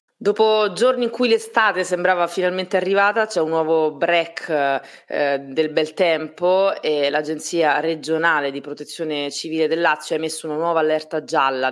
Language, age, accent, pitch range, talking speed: Italian, 30-49, native, 150-195 Hz, 155 wpm